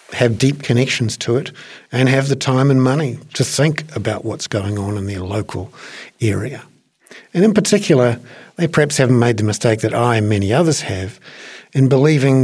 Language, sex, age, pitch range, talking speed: English, male, 50-69, 105-135 Hz, 185 wpm